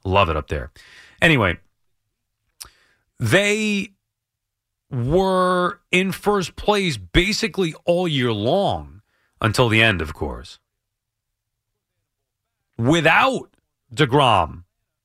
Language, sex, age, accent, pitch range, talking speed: English, male, 40-59, American, 110-170 Hz, 85 wpm